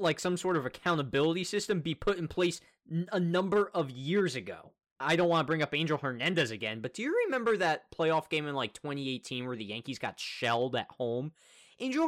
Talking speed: 210 wpm